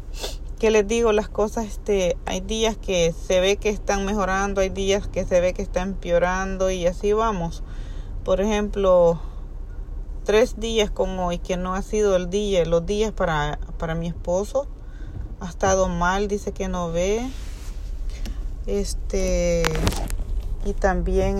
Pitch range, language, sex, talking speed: 160-200 Hz, Spanish, female, 150 wpm